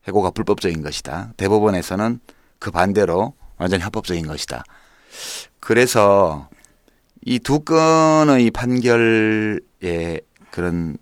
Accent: native